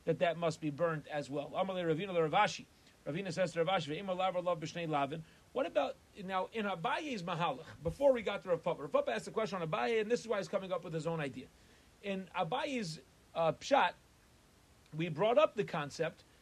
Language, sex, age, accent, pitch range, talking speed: English, male, 40-59, American, 165-235 Hz, 175 wpm